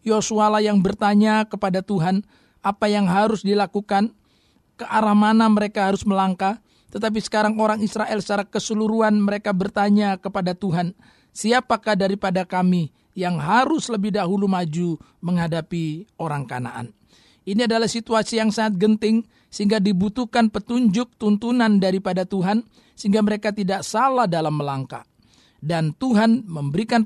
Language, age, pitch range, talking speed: Indonesian, 50-69, 185-225 Hz, 125 wpm